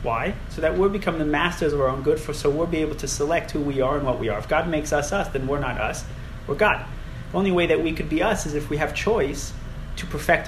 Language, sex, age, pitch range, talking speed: English, male, 30-49, 125-155 Hz, 290 wpm